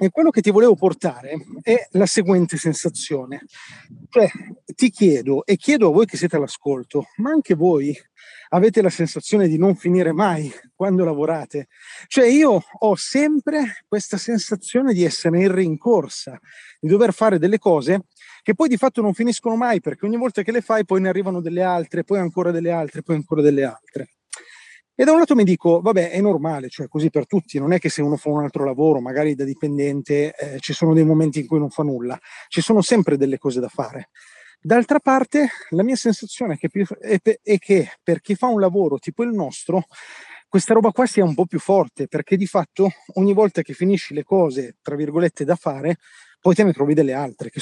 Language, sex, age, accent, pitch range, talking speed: Italian, male, 30-49, native, 155-215 Hz, 200 wpm